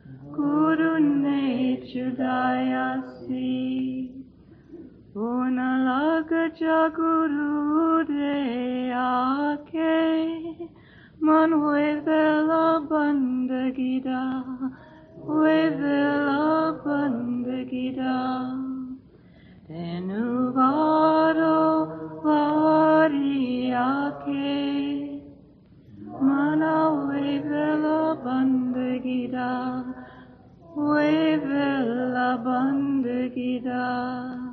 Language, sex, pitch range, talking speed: English, female, 255-295 Hz, 35 wpm